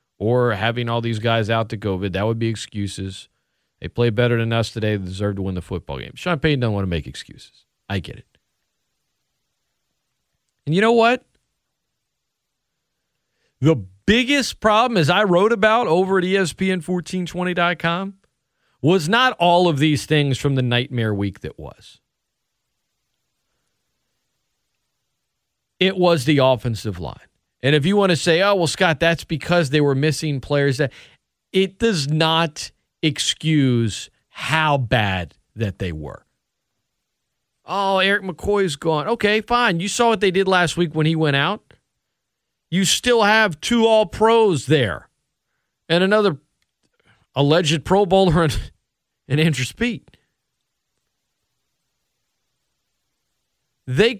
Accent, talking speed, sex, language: American, 135 wpm, male, English